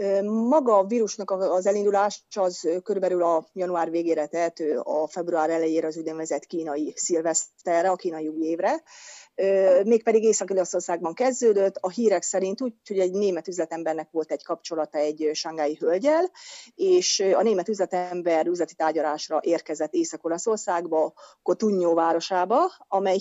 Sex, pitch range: female, 160-200 Hz